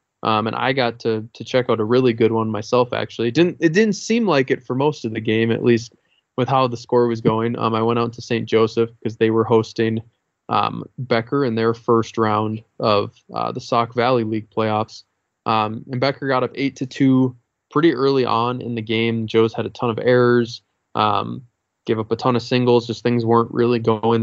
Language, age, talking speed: English, 20-39, 225 wpm